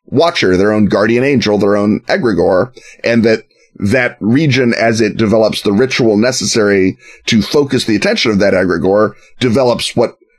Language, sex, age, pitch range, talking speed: English, male, 30-49, 100-130 Hz, 155 wpm